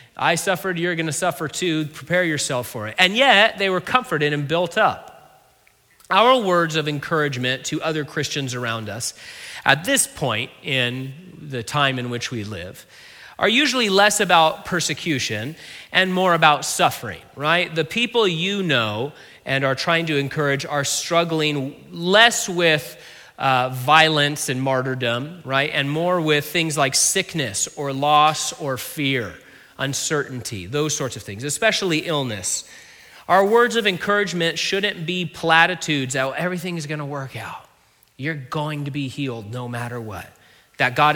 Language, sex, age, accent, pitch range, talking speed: English, male, 30-49, American, 135-175 Hz, 155 wpm